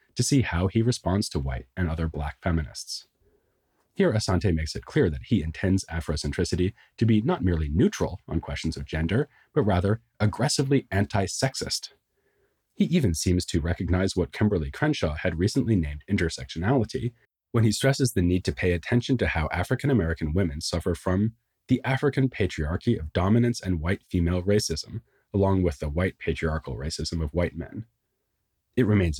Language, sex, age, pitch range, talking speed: English, male, 30-49, 80-115 Hz, 160 wpm